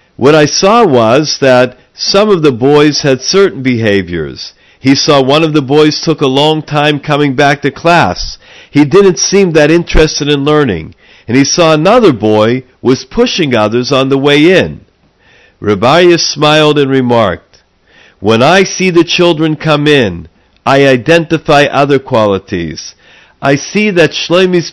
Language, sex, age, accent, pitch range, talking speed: English, male, 50-69, American, 125-160 Hz, 155 wpm